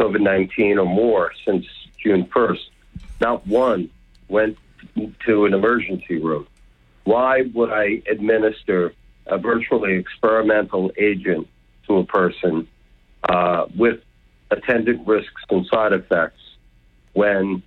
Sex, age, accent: male, 60-79, American